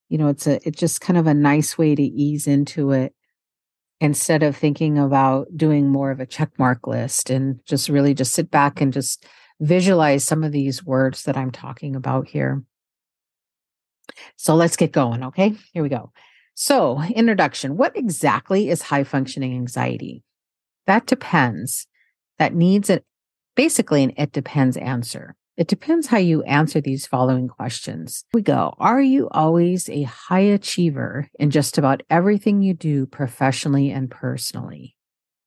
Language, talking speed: English, 155 wpm